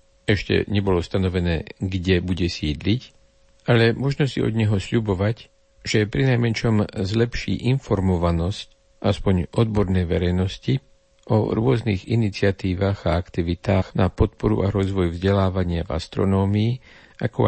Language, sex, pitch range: Slovak, male, 90-105 Hz